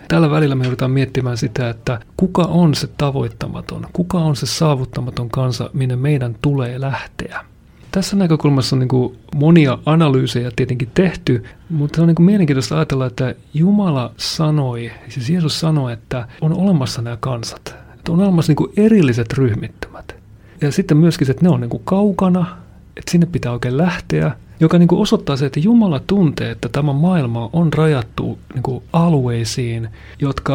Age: 30-49